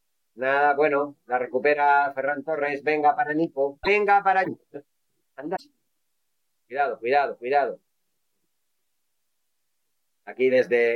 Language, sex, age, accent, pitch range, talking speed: Spanish, male, 30-49, Spanish, 115-150 Hz, 95 wpm